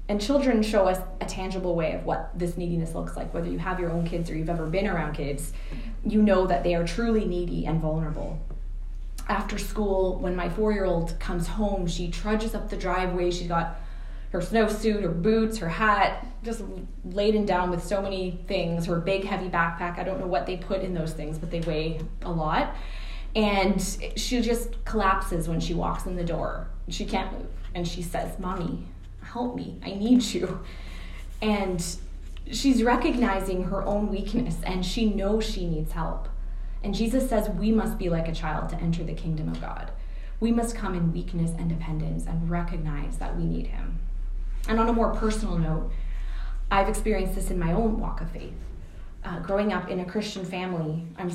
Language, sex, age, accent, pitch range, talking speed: English, female, 20-39, American, 165-205 Hz, 190 wpm